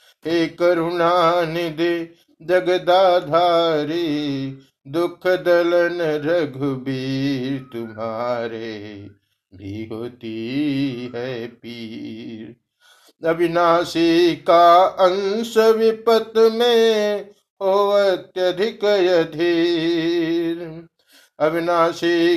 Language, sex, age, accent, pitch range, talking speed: Hindi, male, 60-79, native, 130-180 Hz, 50 wpm